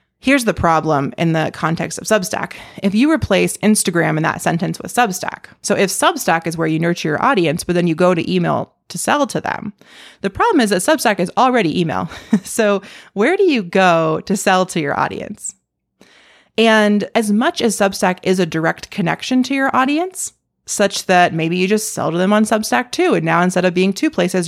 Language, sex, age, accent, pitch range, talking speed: English, female, 30-49, American, 170-215 Hz, 205 wpm